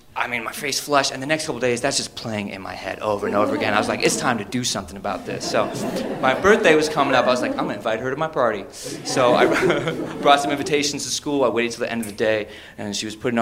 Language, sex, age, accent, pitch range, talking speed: English, male, 20-39, American, 115-145 Hz, 290 wpm